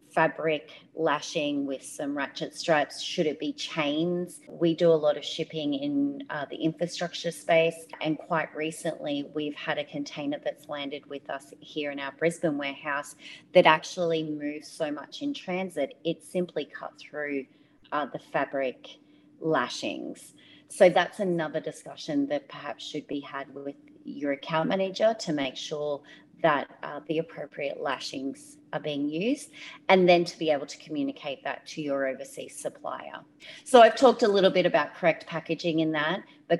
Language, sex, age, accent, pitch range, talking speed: English, female, 30-49, Australian, 145-185 Hz, 165 wpm